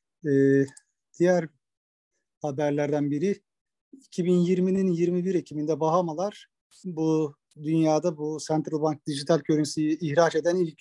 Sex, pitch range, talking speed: male, 150-180 Hz, 100 wpm